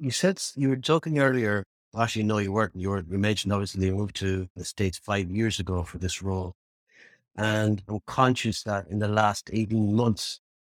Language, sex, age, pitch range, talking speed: English, male, 60-79, 100-120 Hz, 190 wpm